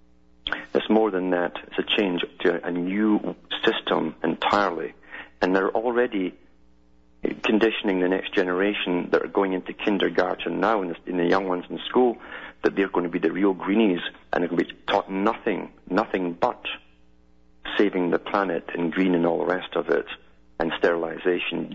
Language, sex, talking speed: English, male, 170 wpm